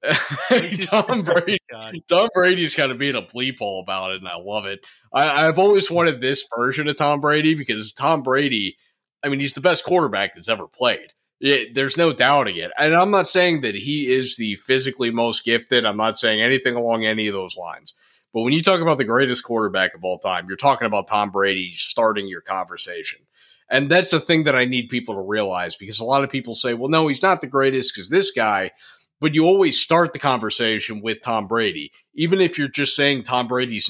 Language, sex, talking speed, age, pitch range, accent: English, male, 215 wpm, 30-49, 115-165 Hz, American